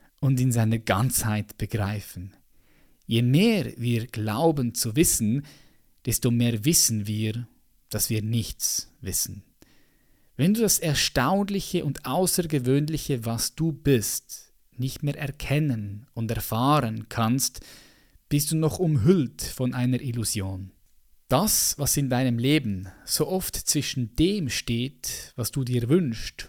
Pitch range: 115-150 Hz